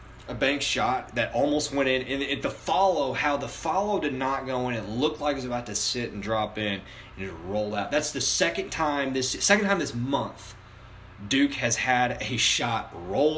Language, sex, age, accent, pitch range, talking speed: English, male, 20-39, American, 100-135 Hz, 205 wpm